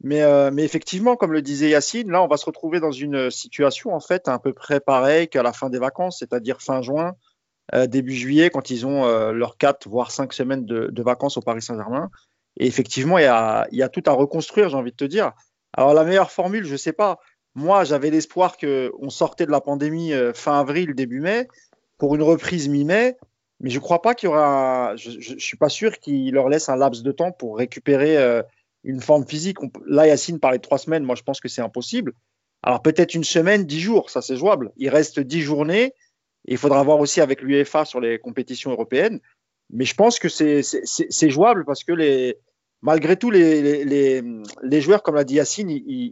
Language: French